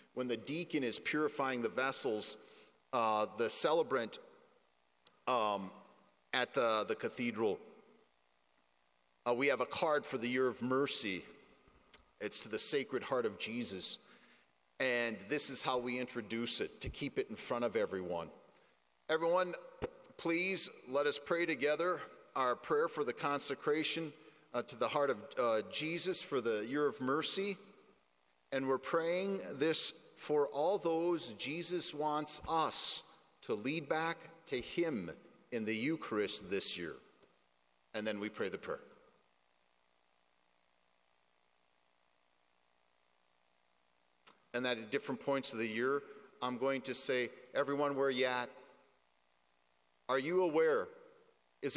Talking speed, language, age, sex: 135 wpm, English, 40-59, male